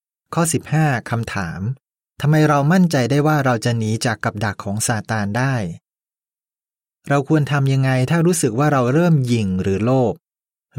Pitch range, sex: 110-145 Hz, male